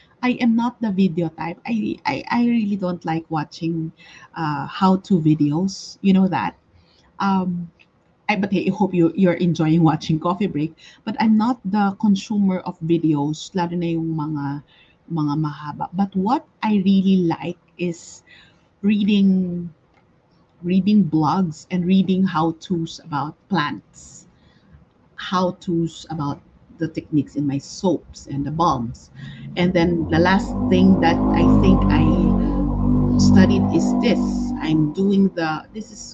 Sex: female